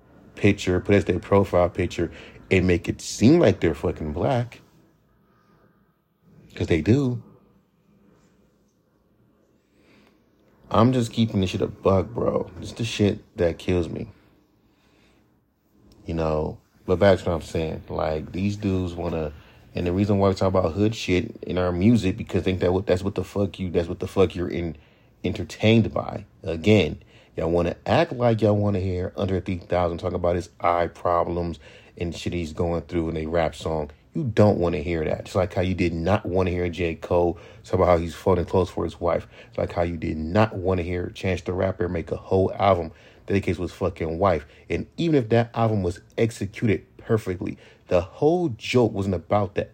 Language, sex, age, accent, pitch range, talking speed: English, male, 30-49, American, 85-105 Hz, 195 wpm